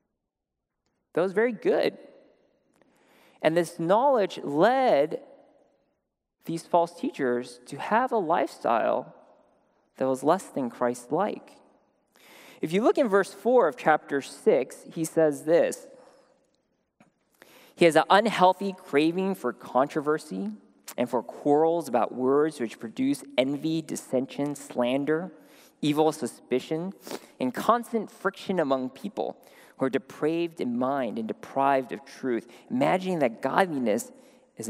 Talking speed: 120 wpm